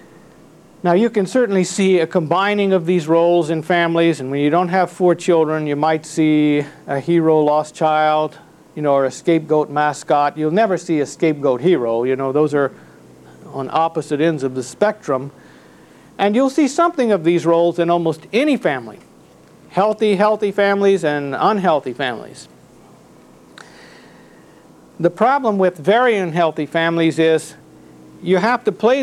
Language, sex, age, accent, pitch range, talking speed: English, male, 50-69, American, 140-190 Hz, 155 wpm